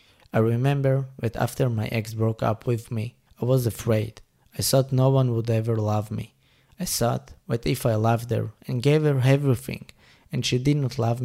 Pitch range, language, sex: 110-130 Hz, English, male